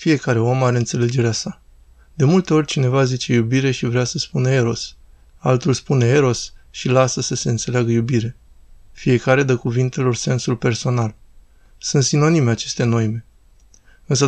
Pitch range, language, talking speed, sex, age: 120-140 Hz, Romanian, 145 wpm, male, 20-39